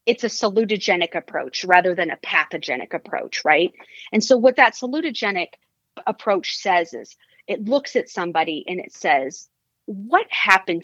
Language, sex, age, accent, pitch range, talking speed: English, female, 40-59, American, 170-225 Hz, 150 wpm